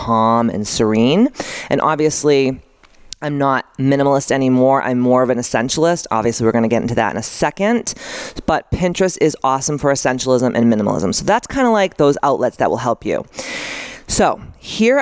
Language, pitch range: English, 130-190 Hz